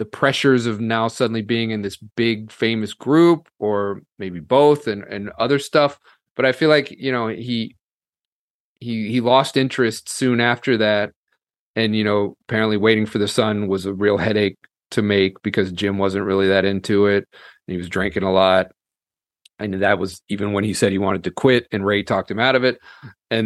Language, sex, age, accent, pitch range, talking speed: English, male, 40-59, American, 105-125 Hz, 200 wpm